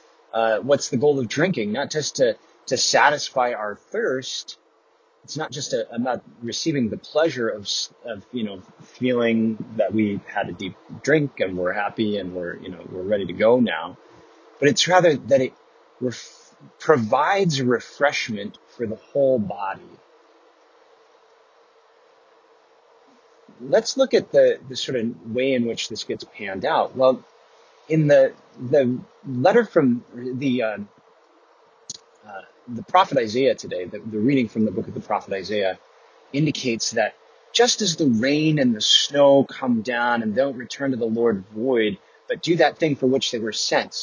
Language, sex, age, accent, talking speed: English, male, 30-49, American, 160 wpm